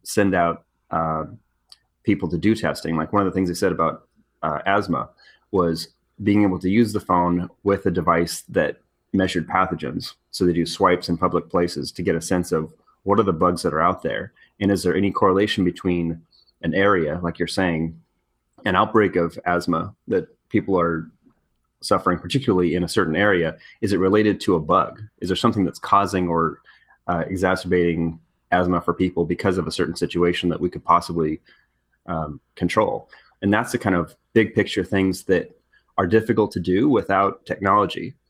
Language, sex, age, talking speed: English, male, 30-49, 185 wpm